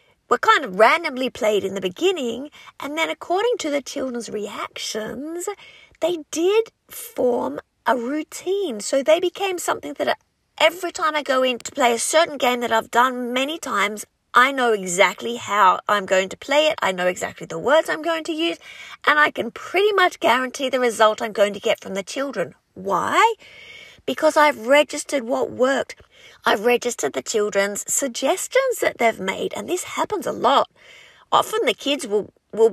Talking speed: 180 wpm